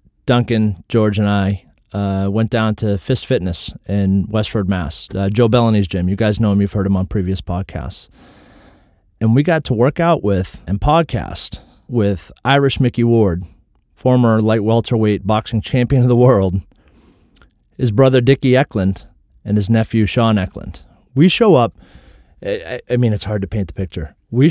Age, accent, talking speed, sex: 30-49, American, 170 wpm, male